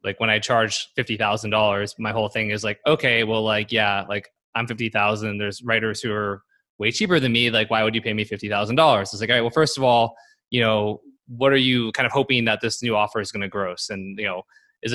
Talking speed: 240 wpm